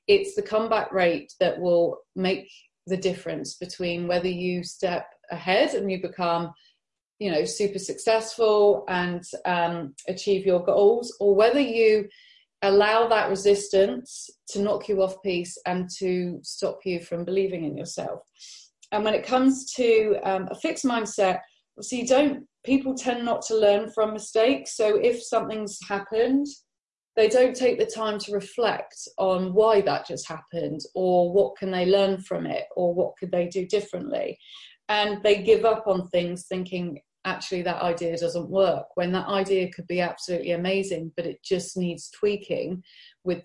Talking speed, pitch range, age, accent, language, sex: 165 wpm, 180-215 Hz, 30-49, British, English, female